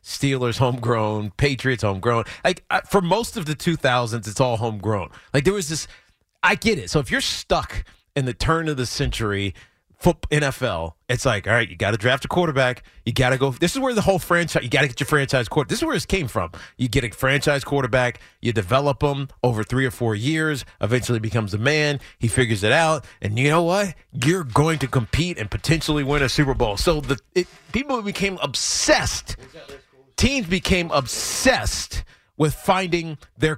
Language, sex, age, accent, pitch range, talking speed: English, male, 30-49, American, 120-170 Hz, 200 wpm